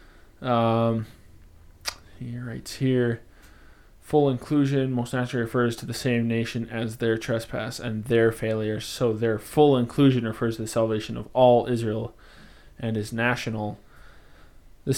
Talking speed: 135 wpm